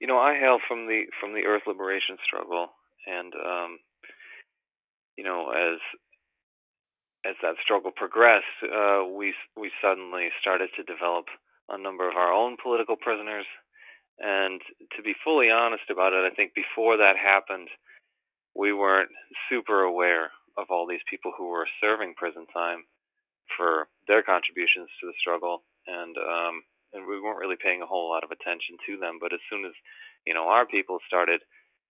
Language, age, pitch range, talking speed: English, 30-49, 90-115 Hz, 165 wpm